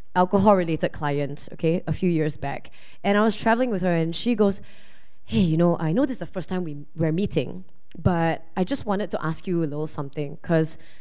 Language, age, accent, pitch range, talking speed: English, 20-39, Malaysian, 180-270 Hz, 225 wpm